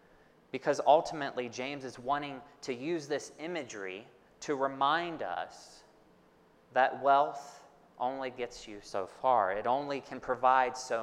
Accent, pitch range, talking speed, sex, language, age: American, 115-140 Hz, 130 wpm, male, English, 30-49